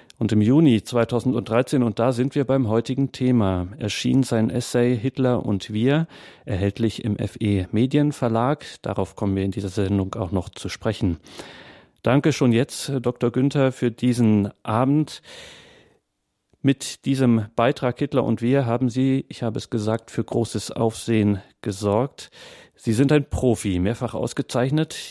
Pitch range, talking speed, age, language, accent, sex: 115-130 Hz, 145 wpm, 40-59, German, German, male